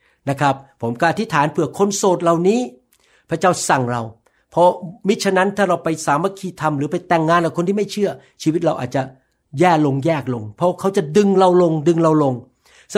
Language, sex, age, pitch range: Thai, male, 60-79, 145-190 Hz